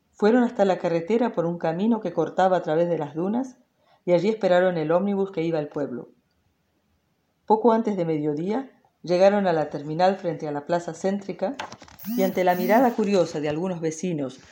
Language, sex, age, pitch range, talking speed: French, female, 40-59, 160-210 Hz, 180 wpm